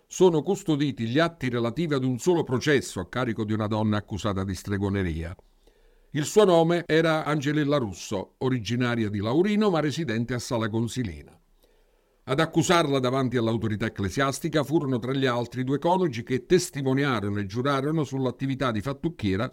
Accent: native